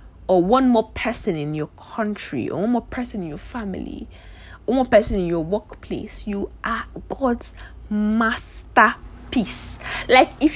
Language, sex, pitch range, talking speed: English, female, 190-235 Hz, 155 wpm